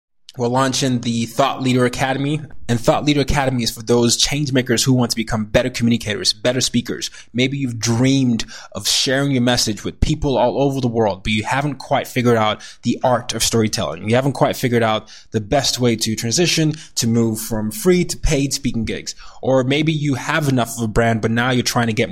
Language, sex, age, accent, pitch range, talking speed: English, male, 20-39, American, 110-125 Hz, 210 wpm